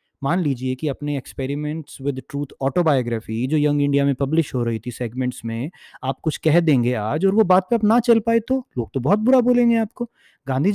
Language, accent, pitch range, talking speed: Hindi, native, 135-185 Hz, 220 wpm